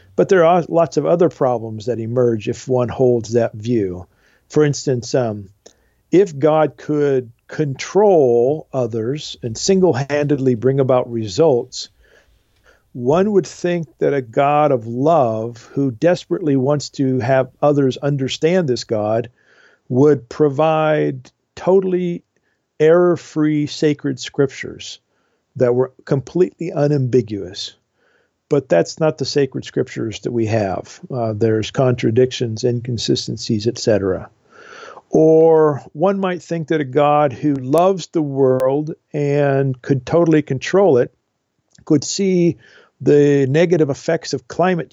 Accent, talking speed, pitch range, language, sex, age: American, 125 wpm, 125-155 Hz, English, male, 50-69